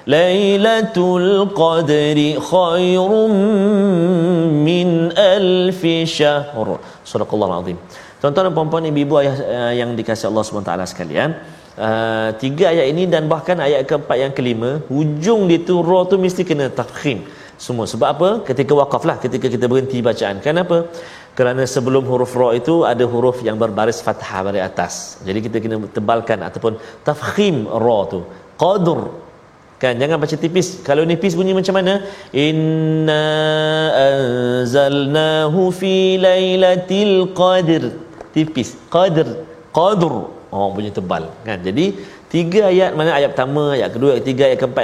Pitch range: 120-185 Hz